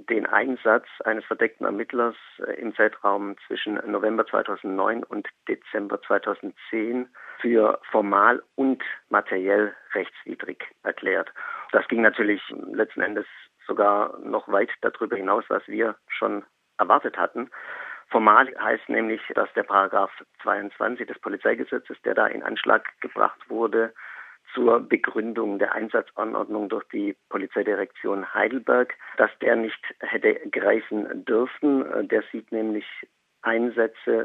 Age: 50-69